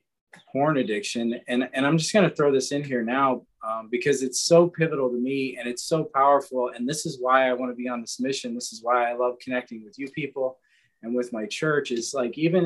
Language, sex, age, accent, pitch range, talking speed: English, male, 20-39, American, 120-150 Hz, 240 wpm